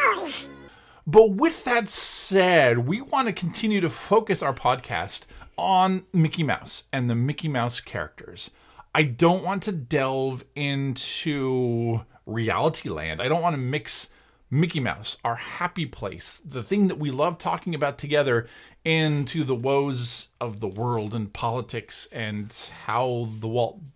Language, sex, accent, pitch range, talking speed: English, male, American, 120-180 Hz, 145 wpm